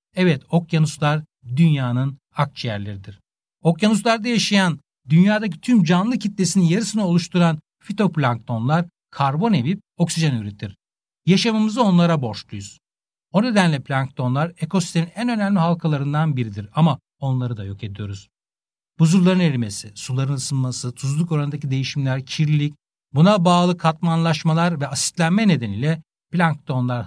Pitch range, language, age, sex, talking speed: 130-180 Hz, Turkish, 60-79, male, 105 wpm